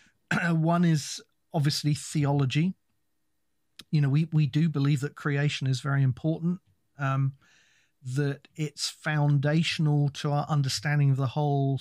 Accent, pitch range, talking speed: British, 130-150 Hz, 130 wpm